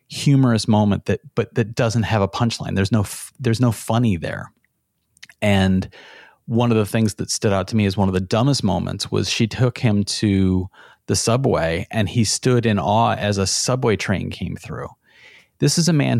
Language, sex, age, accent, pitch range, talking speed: English, male, 30-49, American, 95-115 Hz, 195 wpm